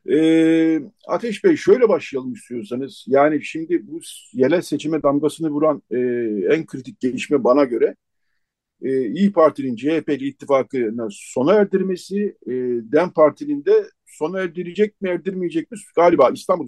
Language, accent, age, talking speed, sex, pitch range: Turkish, native, 50-69, 135 wpm, male, 145-210 Hz